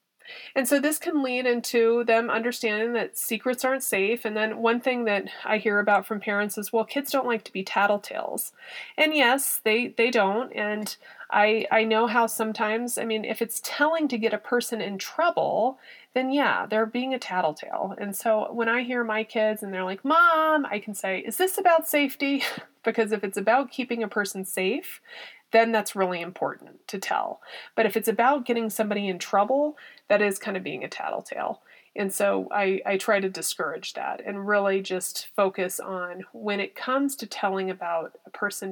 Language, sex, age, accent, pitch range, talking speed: English, female, 30-49, American, 195-240 Hz, 195 wpm